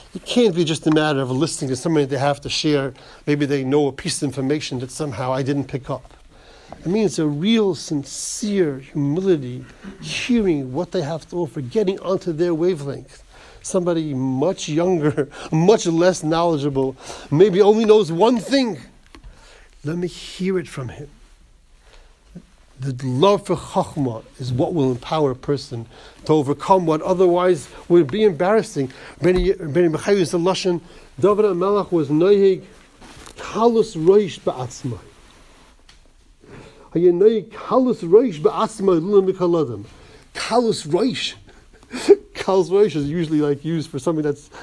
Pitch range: 145-195 Hz